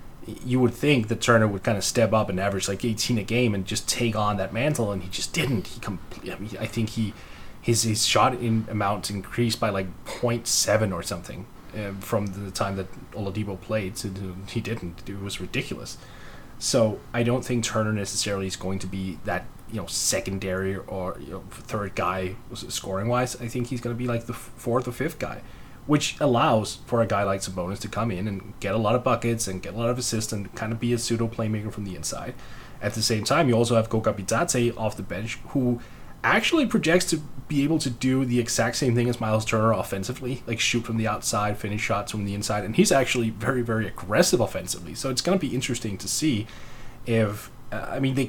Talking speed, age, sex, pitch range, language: 220 wpm, 20-39, male, 100-120 Hz, English